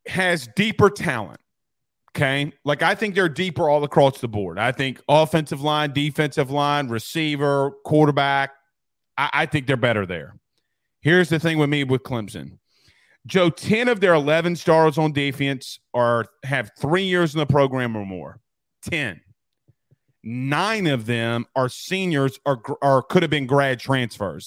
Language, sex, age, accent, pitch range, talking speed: English, male, 30-49, American, 130-165 Hz, 155 wpm